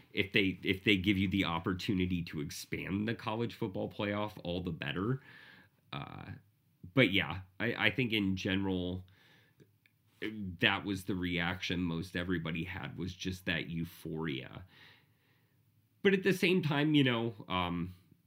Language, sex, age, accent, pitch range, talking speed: English, male, 30-49, American, 85-105 Hz, 145 wpm